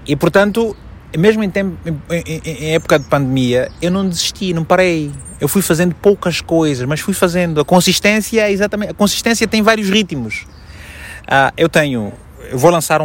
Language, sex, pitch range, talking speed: Portuguese, male, 120-170 Hz, 165 wpm